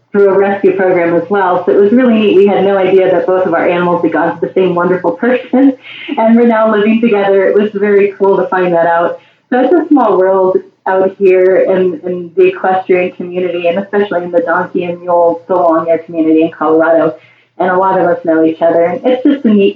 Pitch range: 165-195 Hz